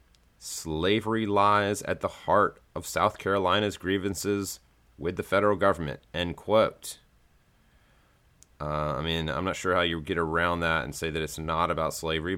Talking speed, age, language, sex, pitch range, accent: 165 wpm, 30-49, English, male, 85-105 Hz, American